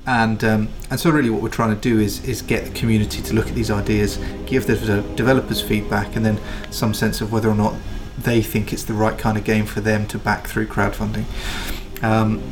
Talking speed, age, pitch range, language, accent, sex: 225 wpm, 30-49, 105-115 Hz, English, British, male